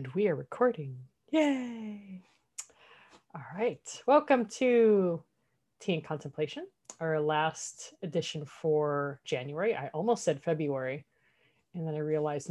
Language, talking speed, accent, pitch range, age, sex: English, 120 wpm, American, 155-215 Hz, 30-49, female